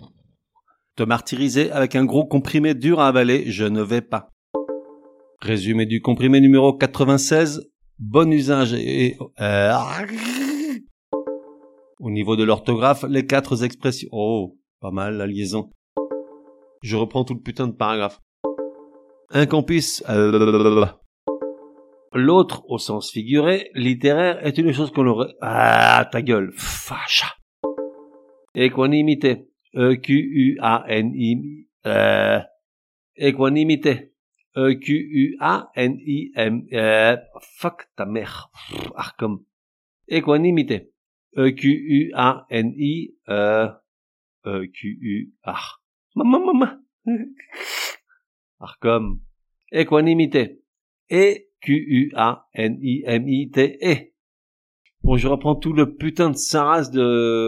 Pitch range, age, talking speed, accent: 105-150 Hz, 50-69, 115 wpm, French